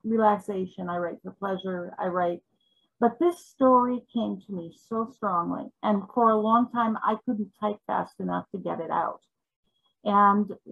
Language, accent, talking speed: English, American, 170 wpm